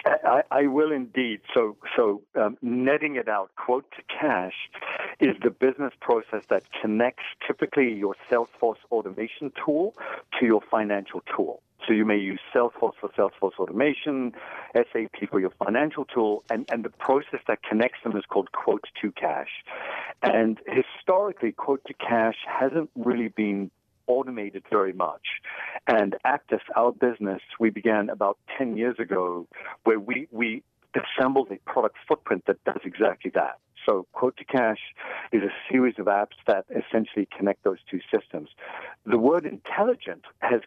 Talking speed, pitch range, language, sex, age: 155 wpm, 105-135 Hz, English, male, 50-69